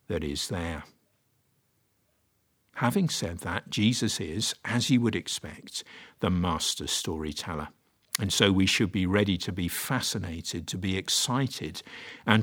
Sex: male